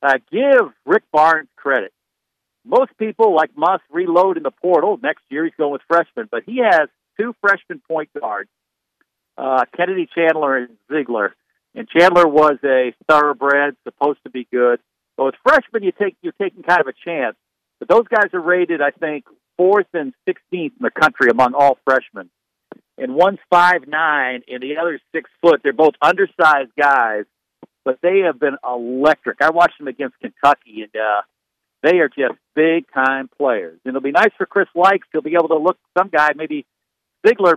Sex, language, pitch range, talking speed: male, English, 140-190 Hz, 180 wpm